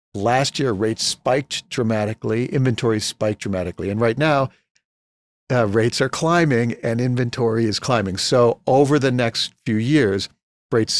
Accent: American